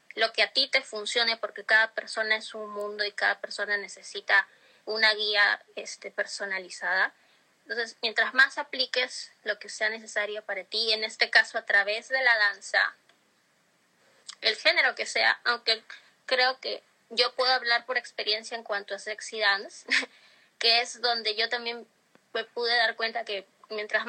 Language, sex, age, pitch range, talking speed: Spanish, female, 20-39, 220-260 Hz, 165 wpm